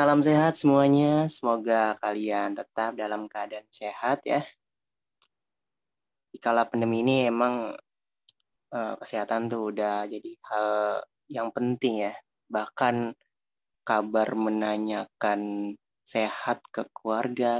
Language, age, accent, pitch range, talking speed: Indonesian, 20-39, native, 105-125 Hz, 100 wpm